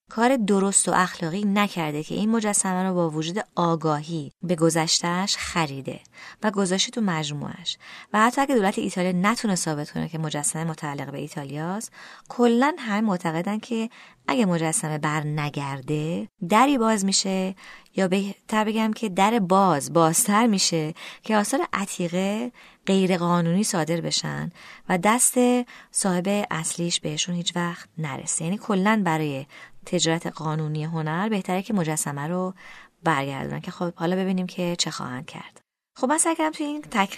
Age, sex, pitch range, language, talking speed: 20-39, female, 160-210 Hz, Persian, 145 wpm